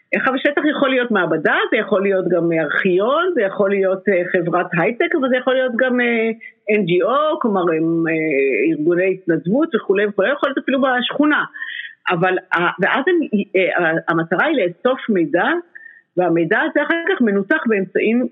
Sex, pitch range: female, 180-280 Hz